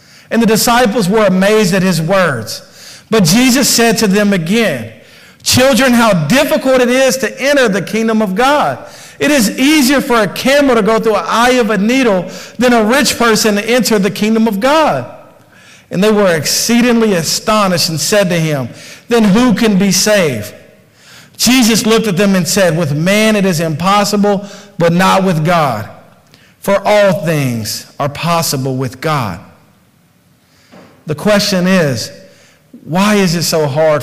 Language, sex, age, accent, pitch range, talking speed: English, male, 50-69, American, 165-250 Hz, 165 wpm